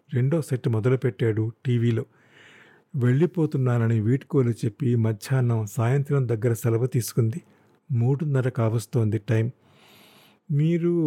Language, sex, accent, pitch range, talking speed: Telugu, male, native, 120-155 Hz, 85 wpm